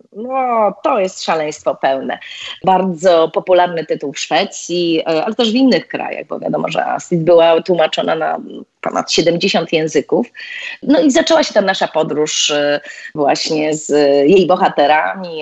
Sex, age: female, 30-49